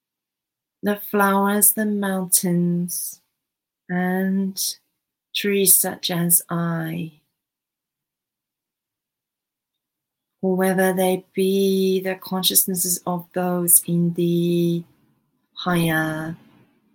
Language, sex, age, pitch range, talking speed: English, female, 40-59, 175-200 Hz, 65 wpm